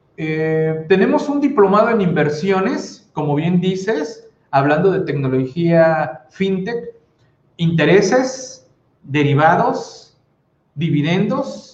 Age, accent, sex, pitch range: 40-59, Mexican, male, 145-185 Hz